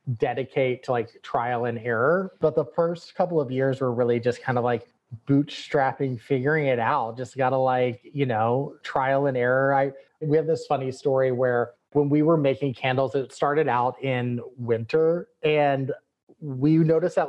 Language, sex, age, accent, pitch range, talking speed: English, male, 30-49, American, 130-160 Hz, 175 wpm